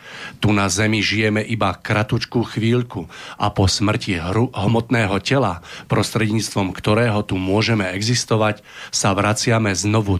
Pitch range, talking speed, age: 100-115 Hz, 125 wpm, 40-59